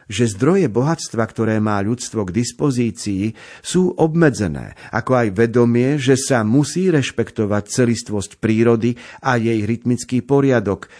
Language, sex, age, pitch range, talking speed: Slovak, male, 50-69, 105-135 Hz, 125 wpm